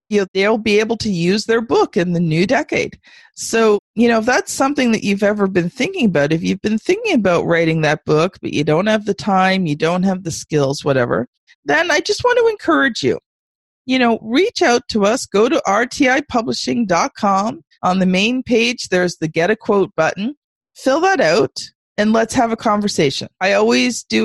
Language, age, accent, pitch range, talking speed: English, 40-59, American, 175-245 Hz, 205 wpm